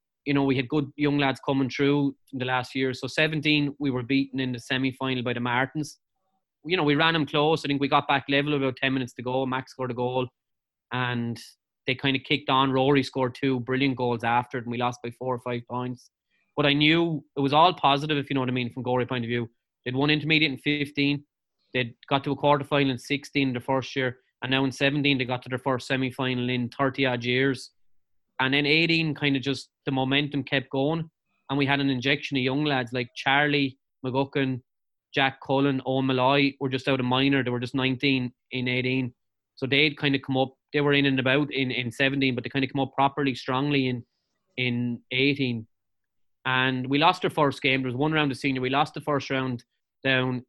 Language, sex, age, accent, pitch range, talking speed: English, male, 20-39, Irish, 125-140 Hz, 230 wpm